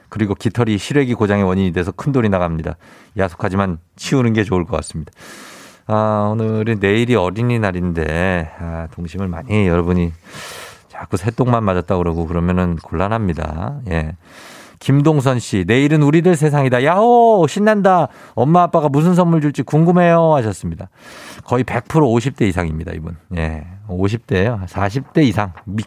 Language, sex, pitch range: Korean, male, 95-145 Hz